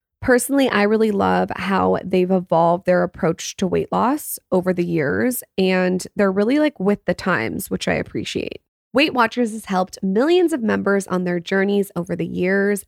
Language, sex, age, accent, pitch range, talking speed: English, female, 20-39, American, 175-215 Hz, 175 wpm